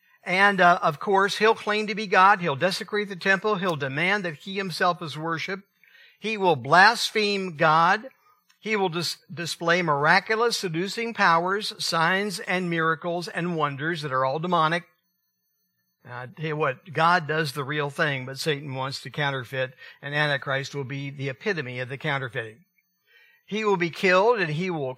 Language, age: English, 60-79